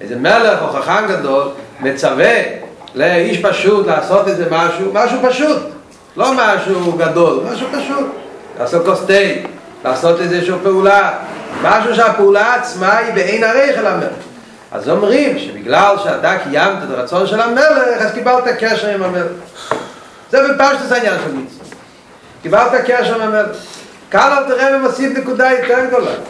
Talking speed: 140 wpm